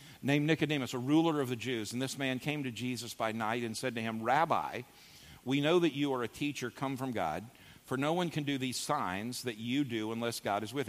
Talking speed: 240 wpm